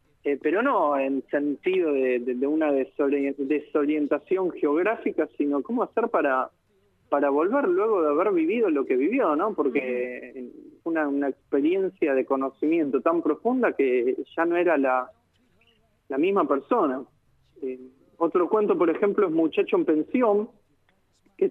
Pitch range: 135-185 Hz